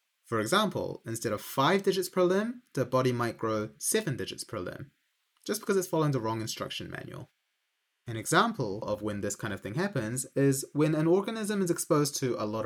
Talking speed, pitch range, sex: 200 wpm, 110-155 Hz, male